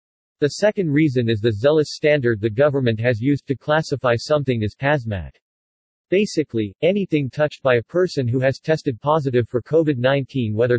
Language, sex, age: English, male, 50-69